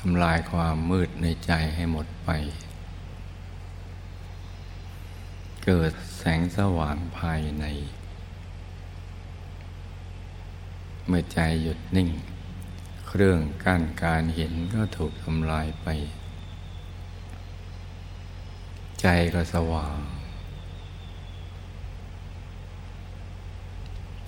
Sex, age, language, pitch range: male, 60-79, Thai, 85-90 Hz